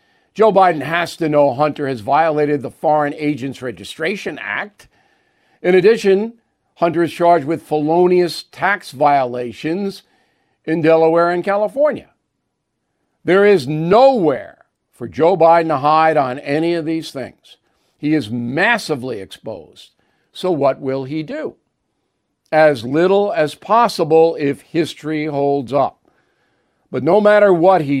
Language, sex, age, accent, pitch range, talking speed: English, male, 50-69, American, 145-185 Hz, 130 wpm